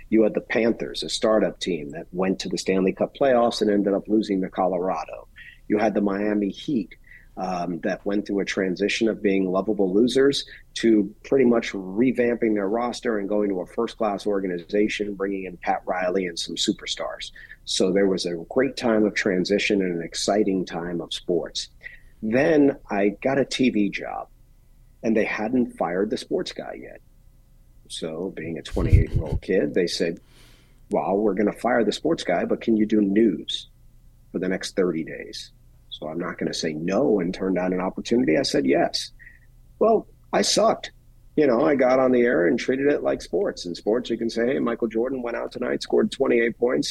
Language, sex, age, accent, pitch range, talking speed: English, male, 40-59, American, 95-120 Hz, 195 wpm